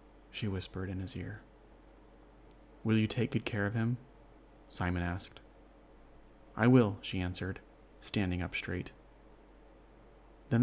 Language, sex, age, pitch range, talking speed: English, male, 30-49, 100-125 Hz, 125 wpm